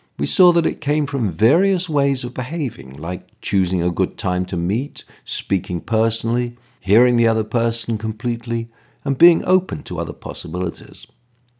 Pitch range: 95-125 Hz